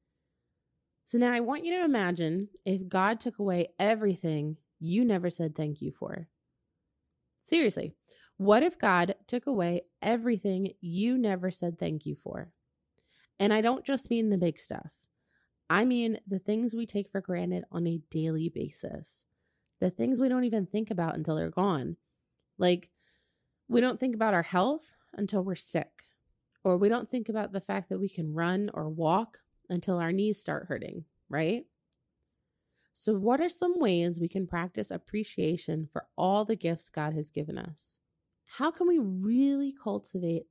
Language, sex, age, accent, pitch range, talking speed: English, female, 30-49, American, 170-220 Hz, 165 wpm